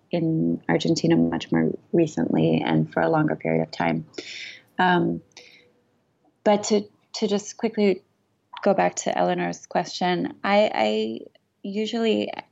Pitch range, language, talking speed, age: 155-200 Hz, English, 125 wpm, 20-39